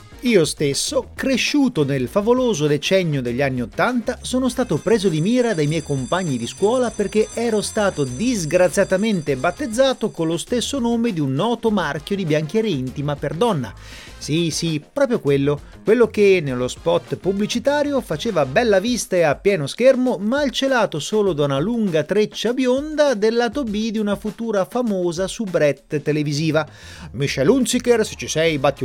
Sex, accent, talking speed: male, native, 155 wpm